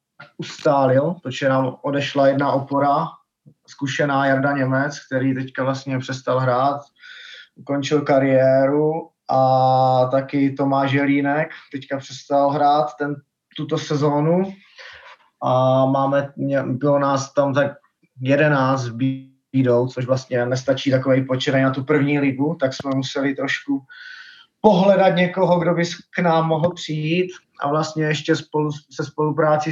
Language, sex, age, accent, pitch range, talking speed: Czech, male, 20-39, native, 135-155 Hz, 125 wpm